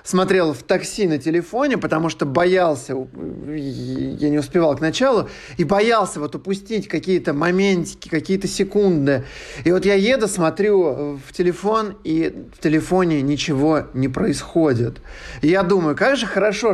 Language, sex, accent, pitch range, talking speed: Russian, male, native, 150-200 Hz, 140 wpm